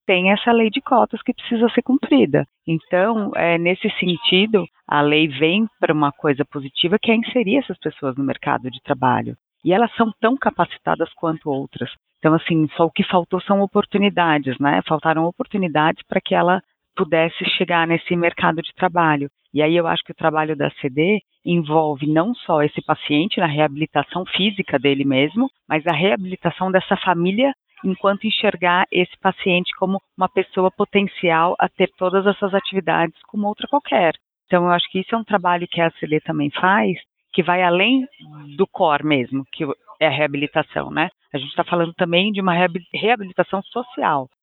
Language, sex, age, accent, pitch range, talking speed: Portuguese, female, 40-59, Brazilian, 155-200 Hz, 175 wpm